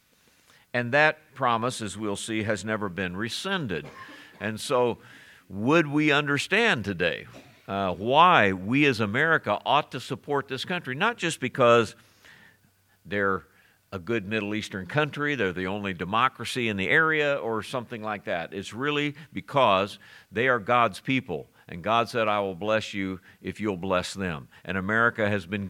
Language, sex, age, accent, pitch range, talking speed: English, male, 50-69, American, 100-140 Hz, 160 wpm